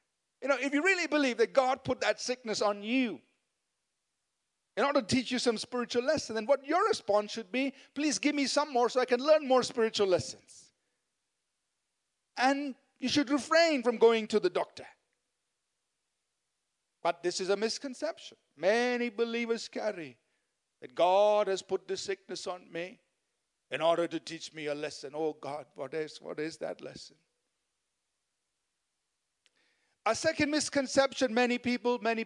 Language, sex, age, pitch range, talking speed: English, male, 50-69, 205-275 Hz, 155 wpm